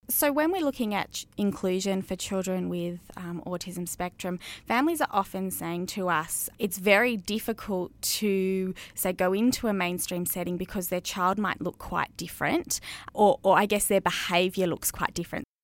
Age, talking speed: 20-39, 170 wpm